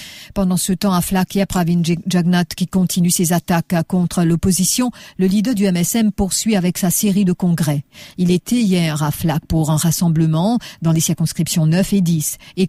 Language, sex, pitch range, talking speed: English, female, 170-205 Hz, 190 wpm